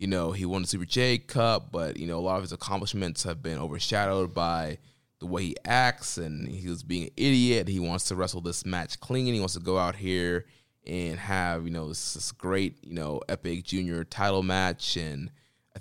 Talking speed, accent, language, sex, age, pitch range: 220 wpm, American, English, male, 20-39, 90-110 Hz